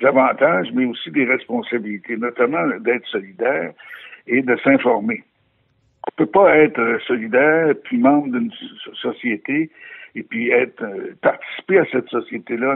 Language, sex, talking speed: French, male, 135 wpm